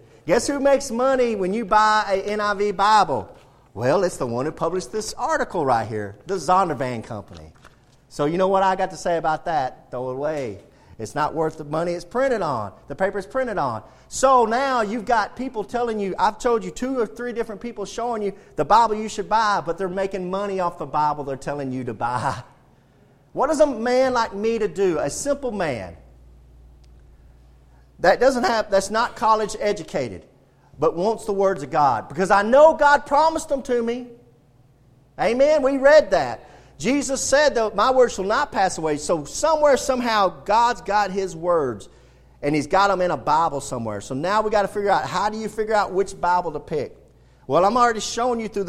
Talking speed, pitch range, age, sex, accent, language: 200 wpm, 145-230 Hz, 40-59, male, American, English